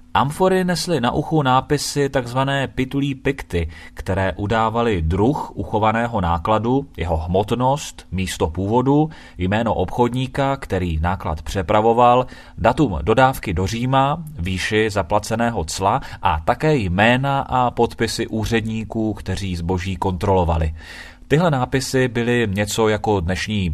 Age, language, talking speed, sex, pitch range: 30-49, Czech, 110 wpm, male, 90-125 Hz